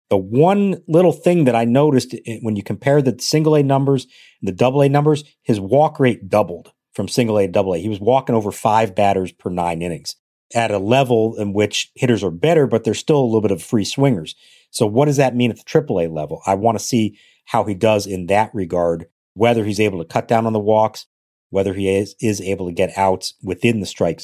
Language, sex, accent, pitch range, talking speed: English, male, American, 105-135 Hz, 225 wpm